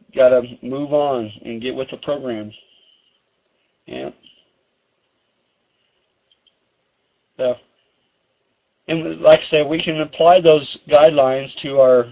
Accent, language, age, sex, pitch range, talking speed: American, English, 40-59, male, 125-165 Hz, 105 wpm